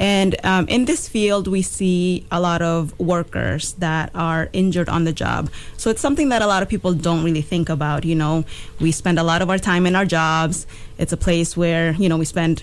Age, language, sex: 20-39, English, female